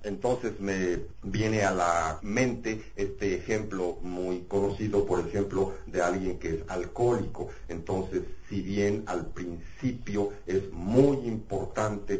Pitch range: 90-105 Hz